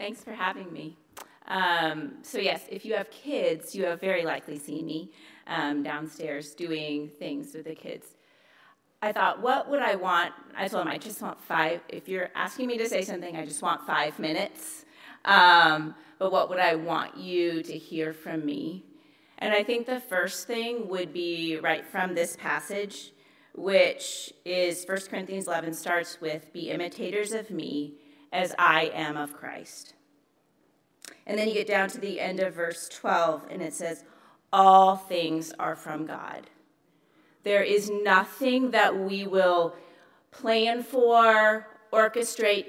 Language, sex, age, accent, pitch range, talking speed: English, female, 30-49, American, 160-205 Hz, 165 wpm